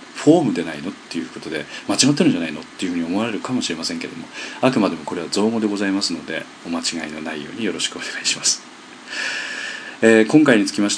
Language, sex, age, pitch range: Japanese, male, 40-59, 95-145 Hz